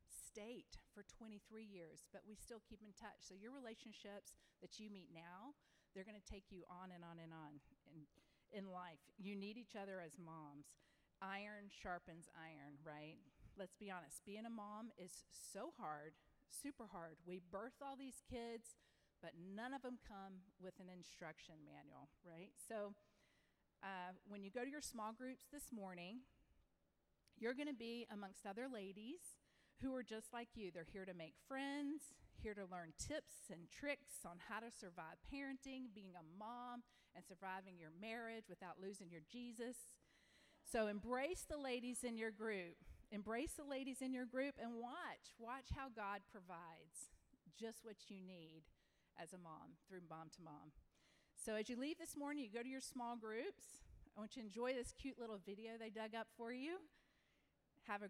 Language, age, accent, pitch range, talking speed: English, 40-59, American, 180-245 Hz, 180 wpm